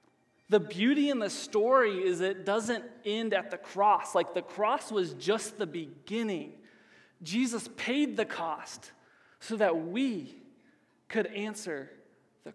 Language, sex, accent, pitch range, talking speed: English, male, American, 170-210 Hz, 140 wpm